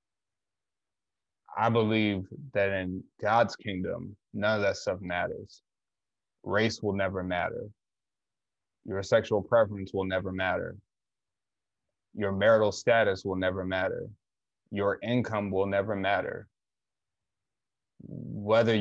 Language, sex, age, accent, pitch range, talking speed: English, male, 20-39, American, 95-105 Hz, 105 wpm